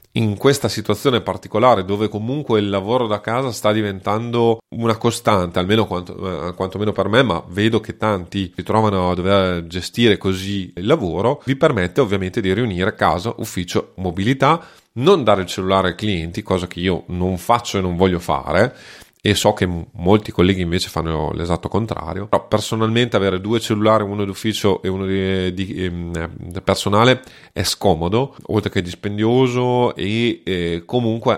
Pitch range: 95-115 Hz